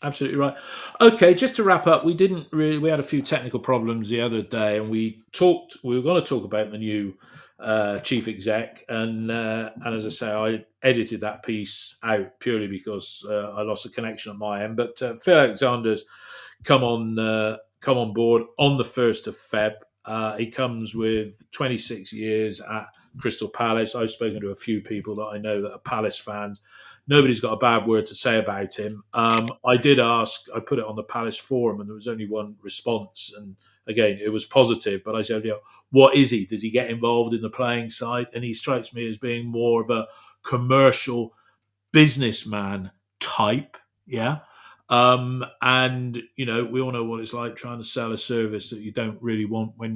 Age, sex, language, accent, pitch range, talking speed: 40-59, male, English, British, 110-125 Hz, 205 wpm